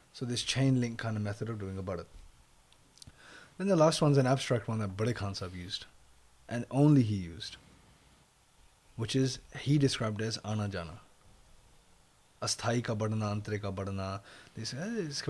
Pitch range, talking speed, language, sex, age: 105-135 Hz, 155 wpm, English, male, 20-39